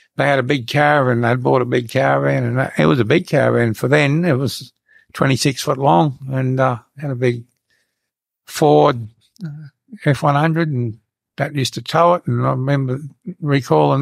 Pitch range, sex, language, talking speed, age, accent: 120-145 Hz, male, English, 175 wpm, 60-79, American